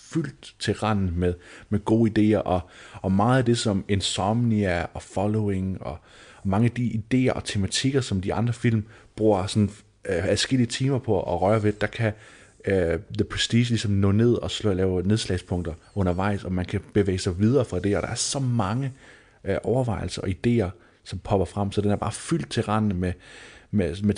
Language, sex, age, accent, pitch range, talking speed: Danish, male, 30-49, native, 95-115 Hz, 200 wpm